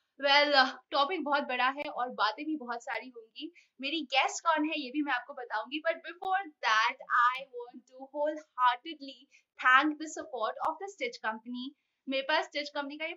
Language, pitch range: Hindi, 250-325 Hz